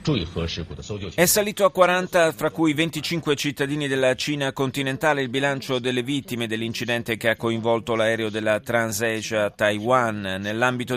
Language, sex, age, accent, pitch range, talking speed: Italian, male, 30-49, native, 115-150 Hz, 130 wpm